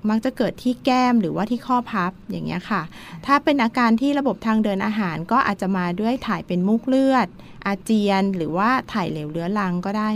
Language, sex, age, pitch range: Thai, female, 20-39, 185-230 Hz